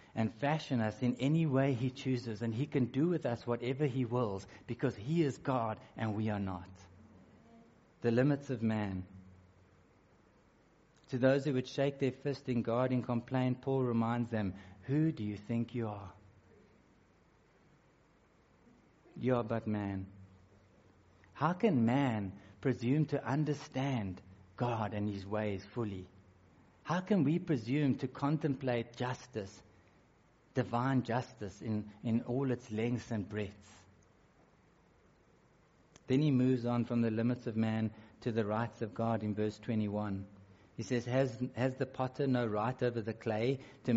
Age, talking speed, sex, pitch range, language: 60-79, 150 wpm, male, 105-130 Hz, English